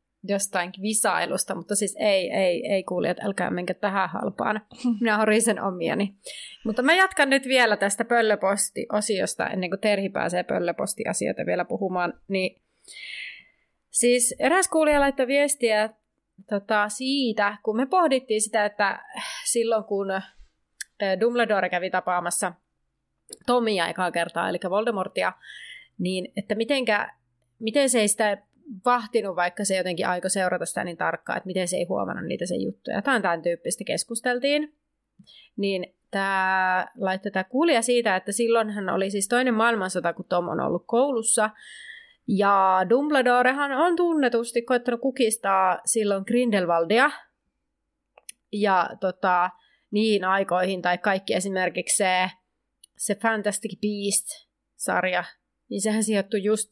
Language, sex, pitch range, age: Finnish, female, 185-240 Hz, 30-49